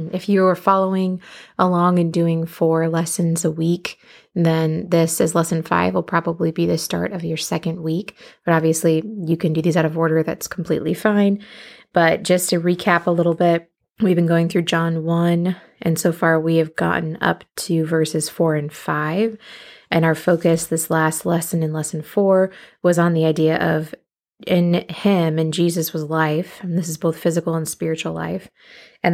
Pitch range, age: 160-175 Hz, 20-39